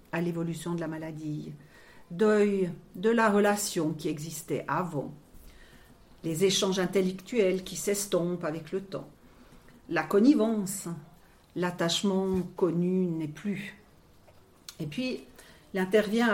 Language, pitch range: French, 165-200 Hz